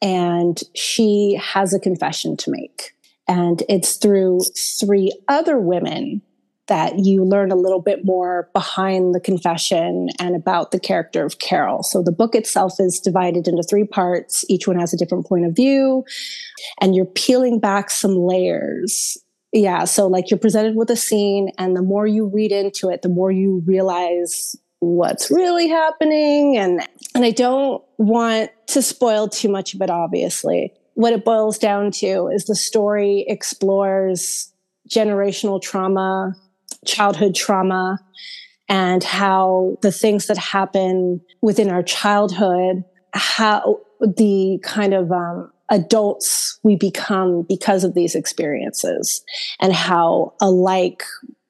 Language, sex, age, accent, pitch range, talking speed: English, female, 30-49, American, 185-215 Hz, 145 wpm